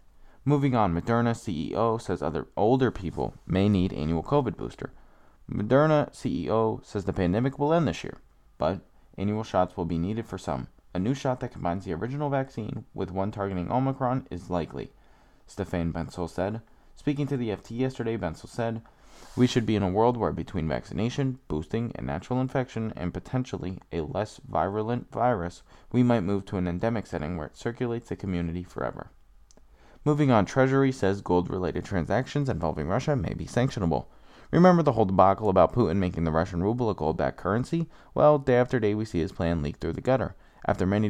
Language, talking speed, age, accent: English, 180 wpm, 20-39, American